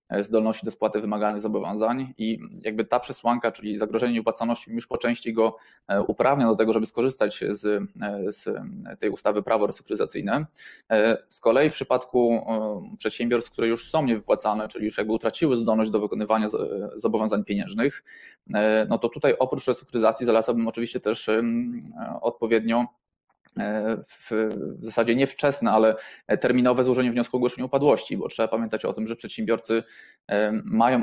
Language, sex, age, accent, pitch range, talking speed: Polish, male, 20-39, native, 110-130 Hz, 140 wpm